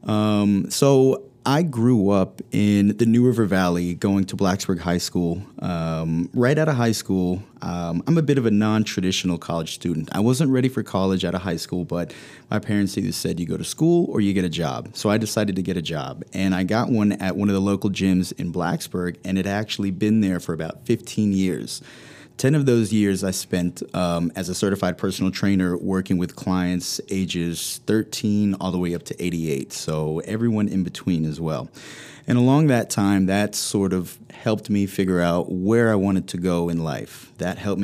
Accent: American